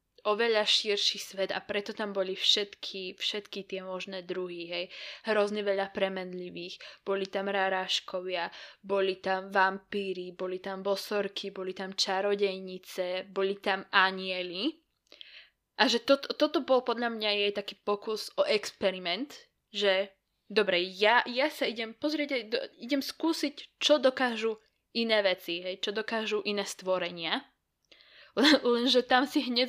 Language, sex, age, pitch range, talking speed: Slovak, female, 20-39, 190-235 Hz, 135 wpm